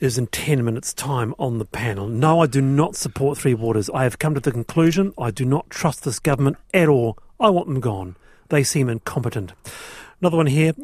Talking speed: 215 wpm